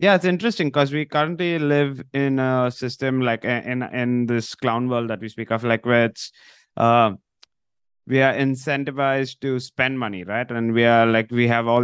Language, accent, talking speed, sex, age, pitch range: English, Indian, 195 wpm, male, 20-39, 115-140 Hz